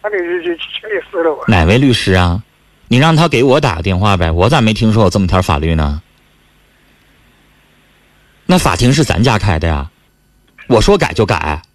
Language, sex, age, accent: Chinese, male, 30-49, native